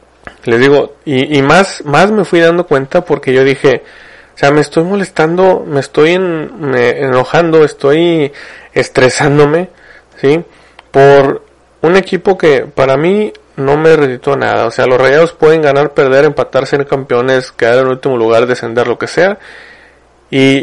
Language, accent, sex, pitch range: Spanish, Mexican, male, 125-155 Hz